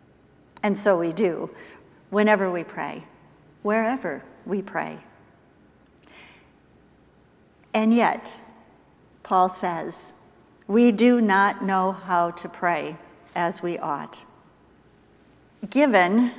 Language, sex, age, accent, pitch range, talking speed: English, female, 50-69, American, 185-235 Hz, 90 wpm